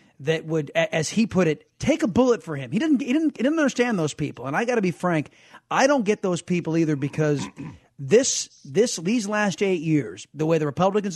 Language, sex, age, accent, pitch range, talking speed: English, male, 30-49, American, 155-210 Hz, 230 wpm